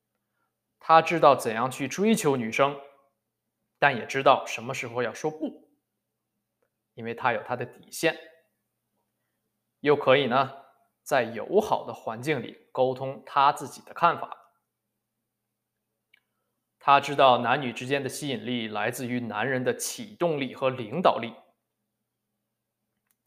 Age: 20-39